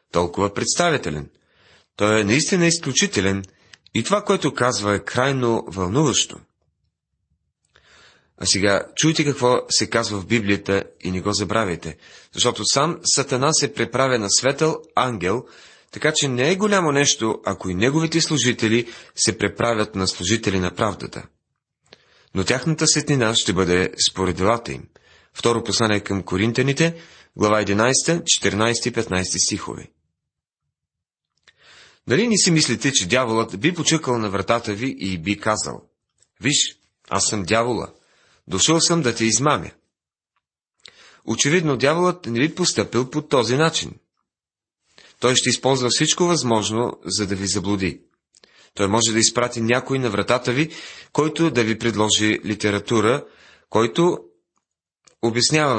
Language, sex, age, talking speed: Bulgarian, male, 30-49, 130 wpm